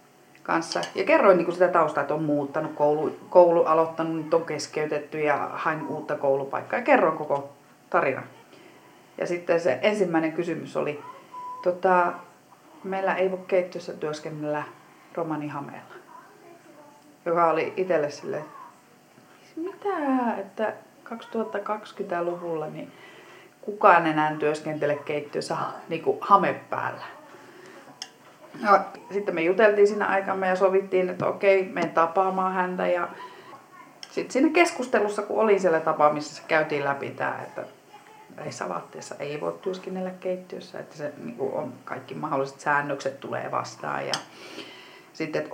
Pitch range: 150-195 Hz